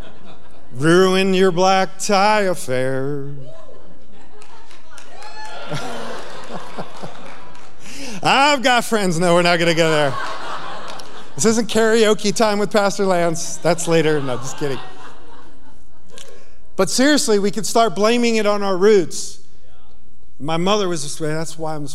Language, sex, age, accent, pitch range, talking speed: English, male, 40-59, American, 150-190 Hz, 125 wpm